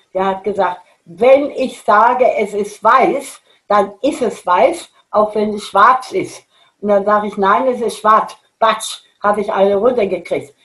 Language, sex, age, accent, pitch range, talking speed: German, female, 60-79, German, 185-215 Hz, 175 wpm